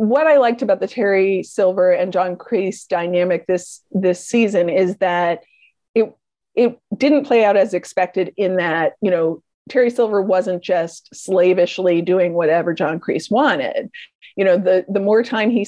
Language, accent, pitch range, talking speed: English, American, 180-240 Hz, 170 wpm